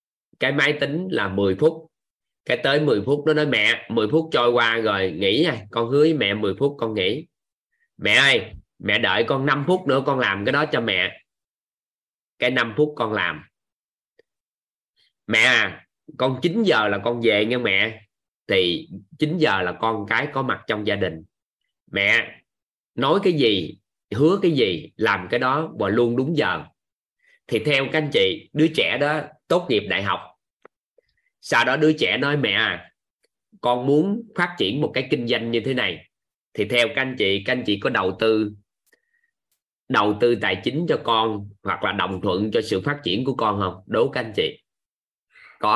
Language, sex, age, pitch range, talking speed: Vietnamese, male, 20-39, 115-155 Hz, 190 wpm